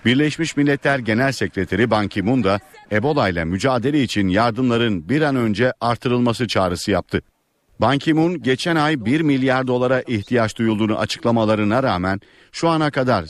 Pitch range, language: 105-130 Hz, Turkish